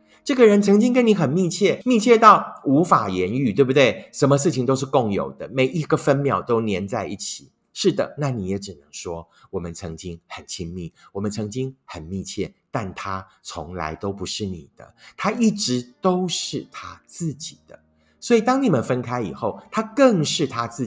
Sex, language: male, Chinese